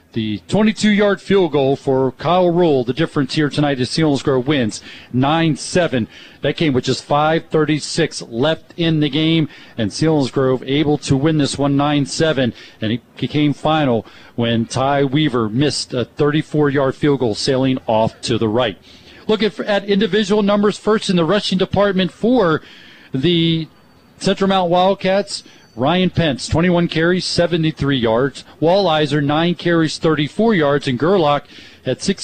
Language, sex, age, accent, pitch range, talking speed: English, male, 40-59, American, 135-175 Hz, 150 wpm